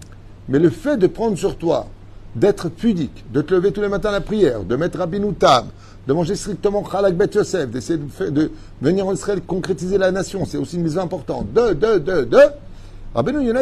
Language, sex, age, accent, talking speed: French, male, 50-69, French, 215 wpm